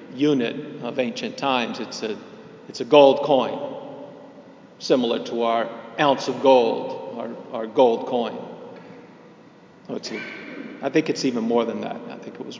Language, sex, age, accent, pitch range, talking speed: English, male, 50-69, American, 135-185 Hz, 160 wpm